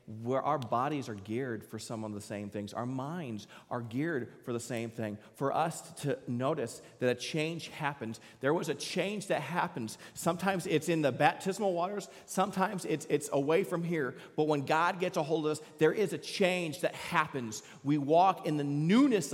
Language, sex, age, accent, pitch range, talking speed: English, male, 40-59, American, 155-245 Hz, 200 wpm